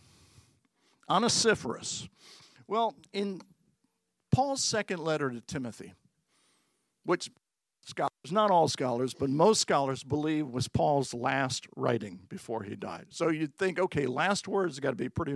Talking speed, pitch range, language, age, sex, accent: 135 wpm, 130-195 Hz, English, 50-69, male, American